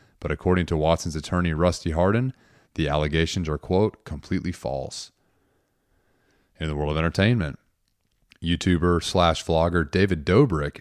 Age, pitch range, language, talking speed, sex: 30-49, 80-100 Hz, English, 130 wpm, male